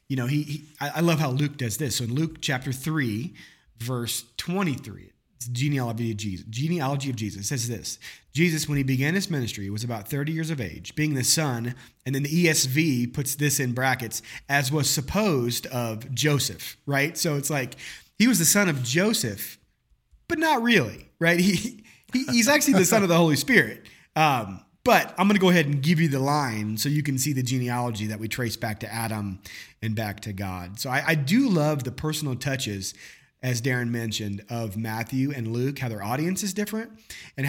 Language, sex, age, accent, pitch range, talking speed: English, male, 30-49, American, 110-150 Hz, 205 wpm